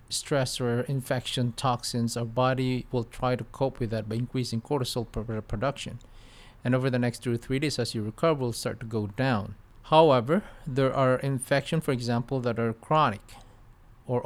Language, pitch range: English, 115-140 Hz